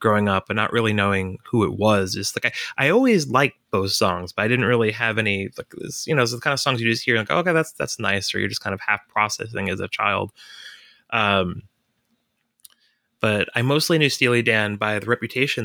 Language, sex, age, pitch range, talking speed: English, male, 20-39, 105-125 Hz, 235 wpm